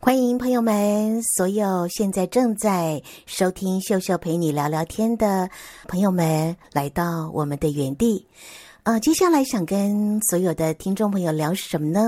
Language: Chinese